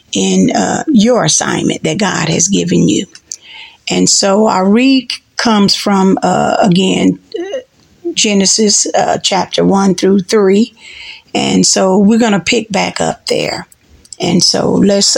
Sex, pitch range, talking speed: female, 190-220 Hz, 140 wpm